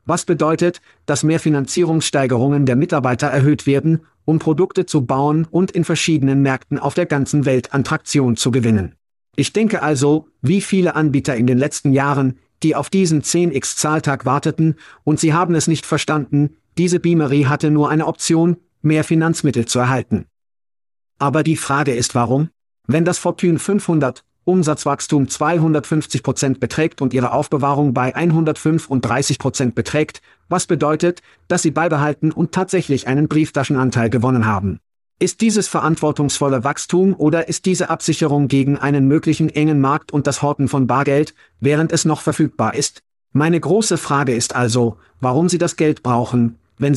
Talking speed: 150 wpm